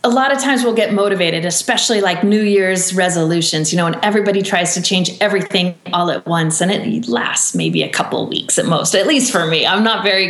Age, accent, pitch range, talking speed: 30-49, American, 170-210 Hz, 235 wpm